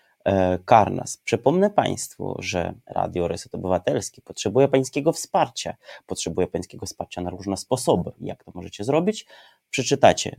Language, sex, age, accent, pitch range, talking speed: Polish, male, 30-49, native, 95-125 Hz, 120 wpm